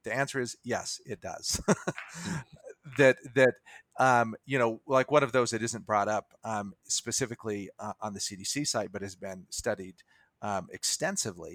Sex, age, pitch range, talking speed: male, 40-59, 105-135 Hz, 165 wpm